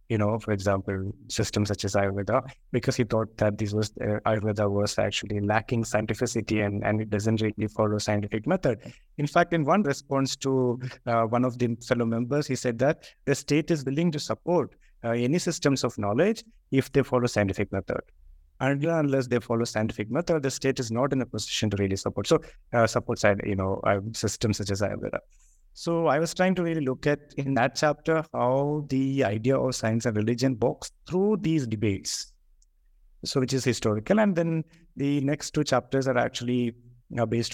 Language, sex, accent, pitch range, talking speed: English, male, Indian, 110-135 Hz, 190 wpm